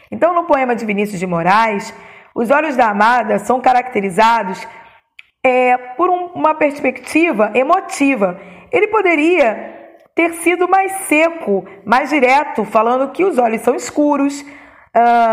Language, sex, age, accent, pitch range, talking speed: Portuguese, female, 20-39, Brazilian, 220-300 Hz, 135 wpm